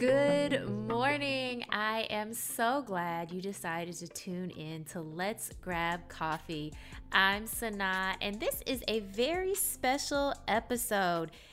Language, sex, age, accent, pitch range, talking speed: English, female, 20-39, American, 175-250 Hz, 125 wpm